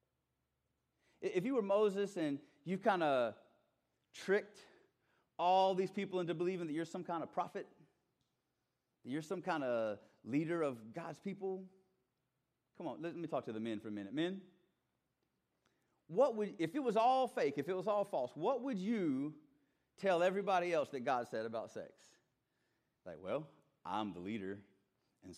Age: 30-49